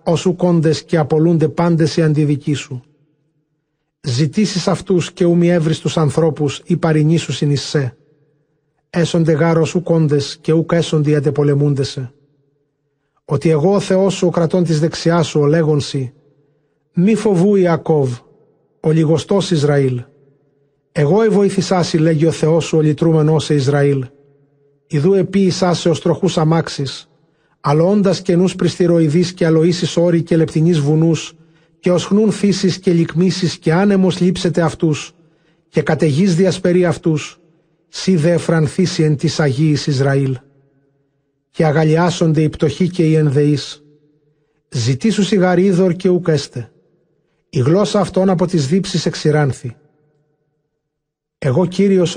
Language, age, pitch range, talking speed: Greek, 50-69, 150-175 Hz, 125 wpm